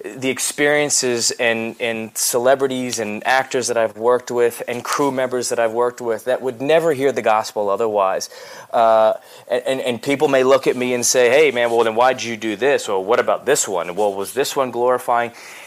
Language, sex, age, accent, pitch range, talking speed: English, male, 30-49, American, 115-130 Hz, 205 wpm